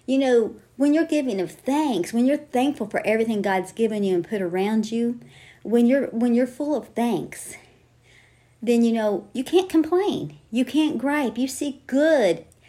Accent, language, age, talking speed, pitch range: American, English, 40-59, 180 wpm, 175-235 Hz